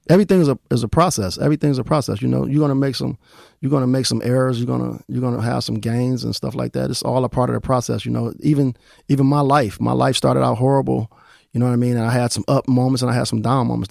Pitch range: 115-125 Hz